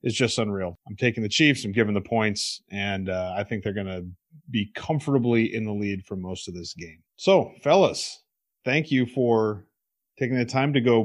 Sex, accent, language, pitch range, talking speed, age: male, American, English, 100-130 Hz, 205 wpm, 40-59